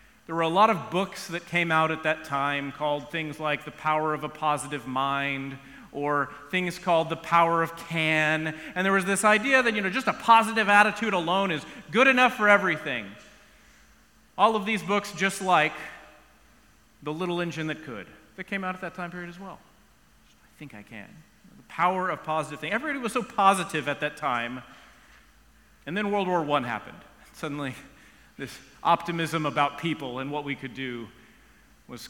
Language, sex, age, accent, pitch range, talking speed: English, male, 40-59, American, 145-205 Hz, 185 wpm